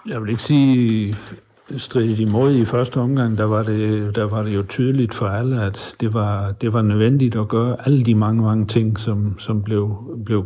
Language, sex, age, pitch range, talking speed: Danish, male, 60-79, 110-125 Hz, 205 wpm